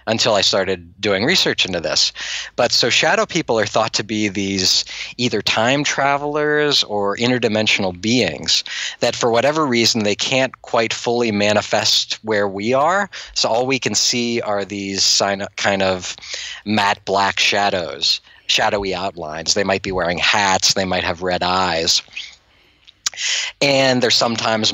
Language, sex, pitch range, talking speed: English, male, 95-115 Hz, 150 wpm